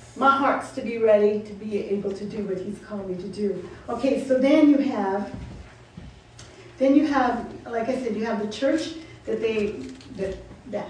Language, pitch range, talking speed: English, 205-265 Hz, 185 wpm